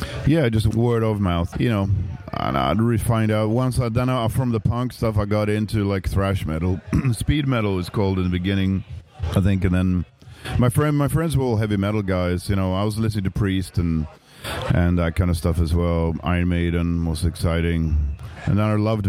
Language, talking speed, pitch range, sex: English, 215 wpm, 90-100 Hz, male